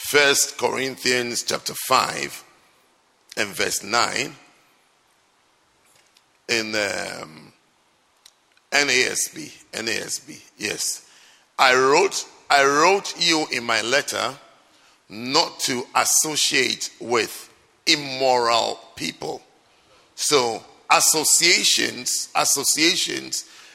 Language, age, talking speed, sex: English, 50-69, 75 wpm, male